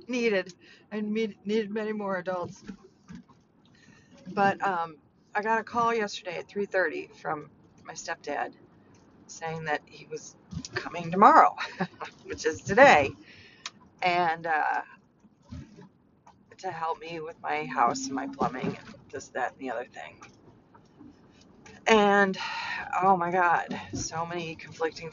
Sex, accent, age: female, American, 40-59